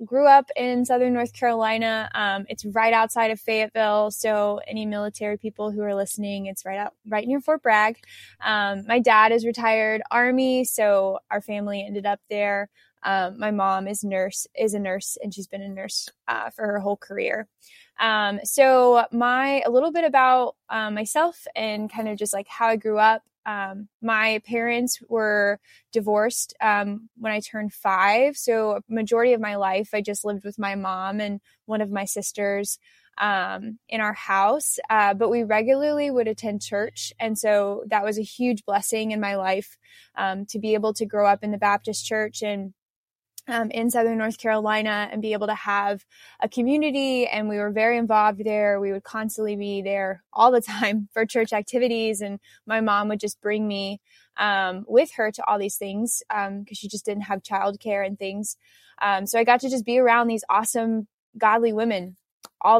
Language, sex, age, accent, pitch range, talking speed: English, female, 20-39, American, 205-230 Hz, 190 wpm